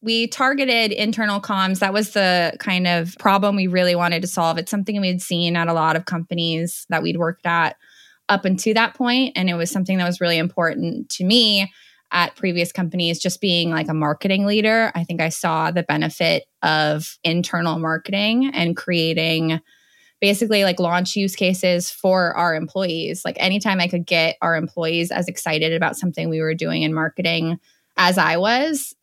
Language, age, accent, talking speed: English, 20-39, American, 185 wpm